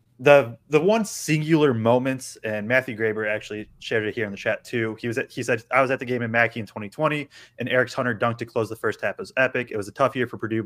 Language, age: English, 20-39